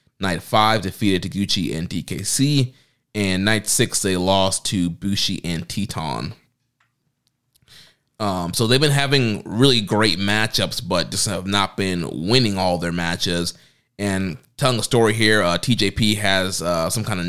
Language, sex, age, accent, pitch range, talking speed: English, male, 20-39, American, 95-115 Hz, 155 wpm